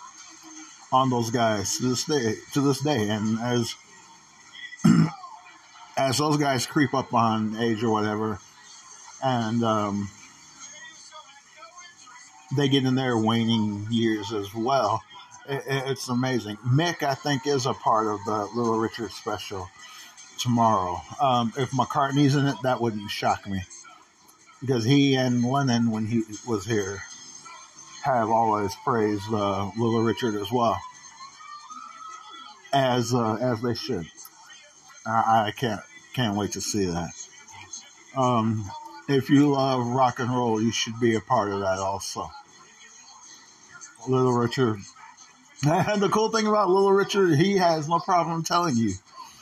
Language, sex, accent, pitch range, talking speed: English, male, American, 110-145 Hz, 135 wpm